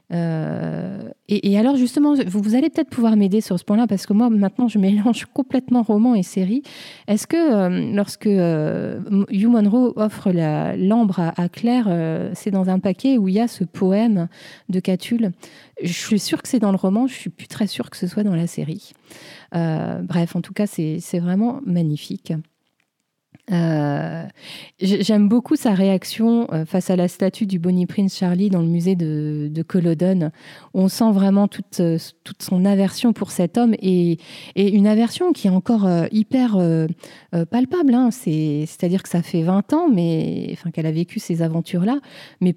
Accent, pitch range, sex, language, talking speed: French, 175-220 Hz, female, French, 185 wpm